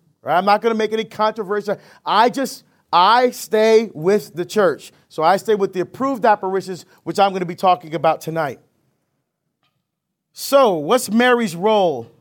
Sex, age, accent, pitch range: male, 40-59, American, 170-220 Hz